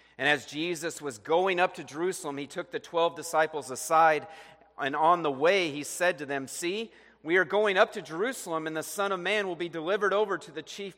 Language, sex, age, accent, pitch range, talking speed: English, male, 40-59, American, 145-180 Hz, 225 wpm